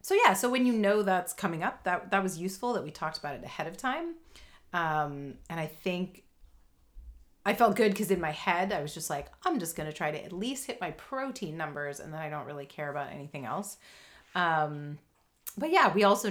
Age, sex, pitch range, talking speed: 30-49, female, 145-200 Hz, 230 wpm